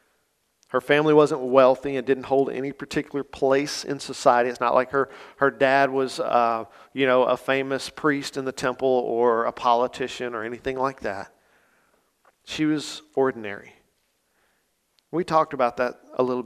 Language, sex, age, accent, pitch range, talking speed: English, male, 40-59, American, 130-165 Hz, 160 wpm